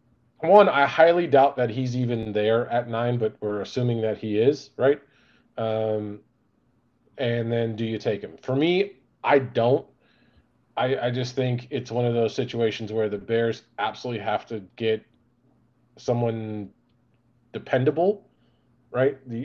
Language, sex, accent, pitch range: English, male, American, 110-130 Hz